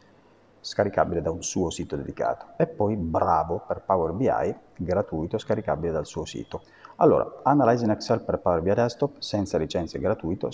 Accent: native